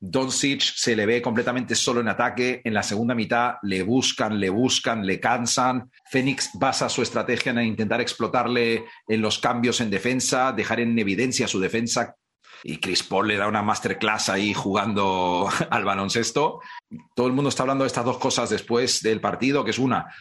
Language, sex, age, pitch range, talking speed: Spanish, male, 40-59, 110-135 Hz, 180 wpm